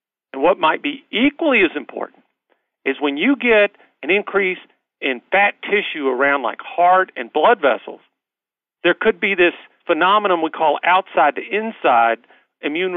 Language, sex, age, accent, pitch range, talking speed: English, male, 40-59, American, 140-190 Hz, 145 wpm